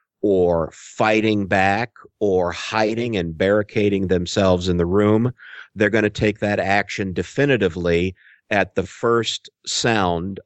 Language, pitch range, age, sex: English, 90-110 Hz, 50-69, male